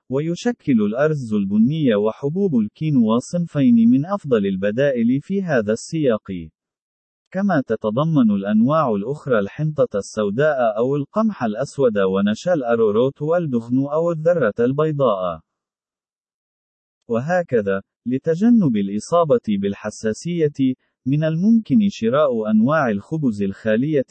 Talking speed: 90 wpm